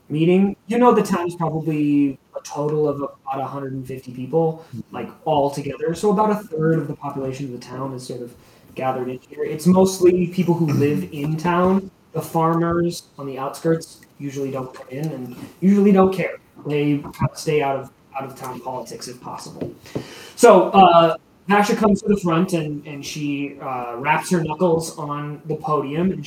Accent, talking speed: American, 185 wpm